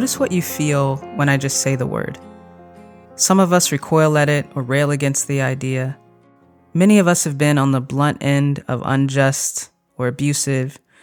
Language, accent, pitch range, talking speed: English, American, 125-150 Hz, 185 wpm